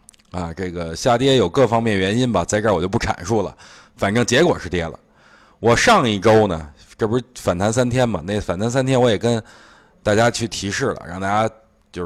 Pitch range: 95-125 Hz